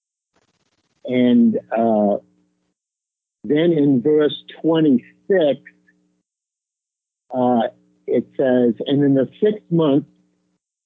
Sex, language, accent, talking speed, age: male, English, American, 75 wpm, 50-69